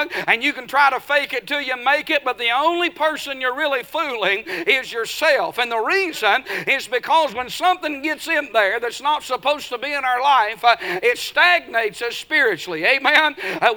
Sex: male